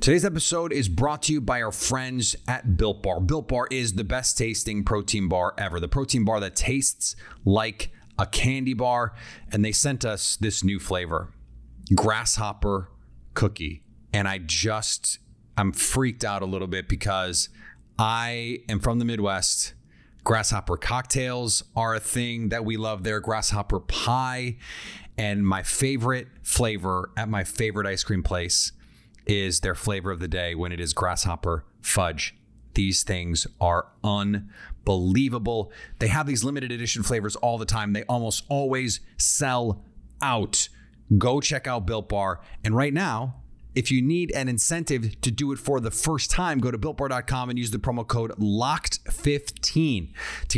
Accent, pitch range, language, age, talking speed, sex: American, 100-125 Hz, English, 30-49, 160 wpm, male